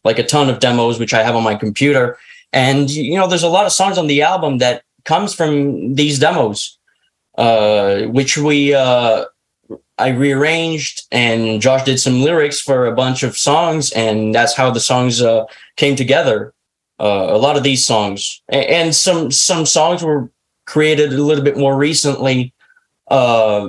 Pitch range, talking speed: 115-145 Hz, 175 wpm